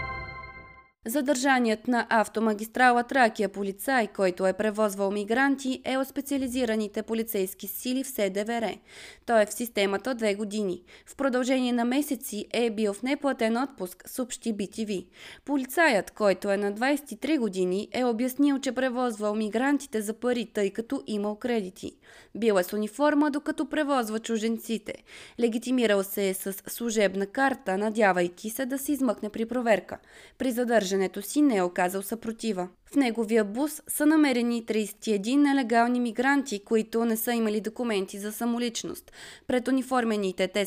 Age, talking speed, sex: 20-39, 140 wpm, female